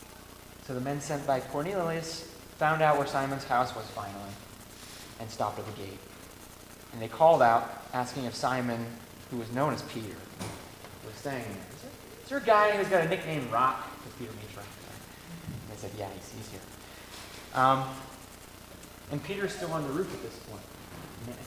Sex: male